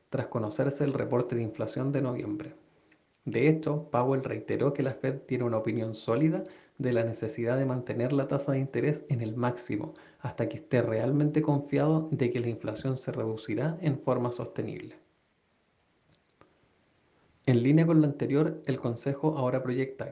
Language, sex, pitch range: Spanish, male, 120-150 Hz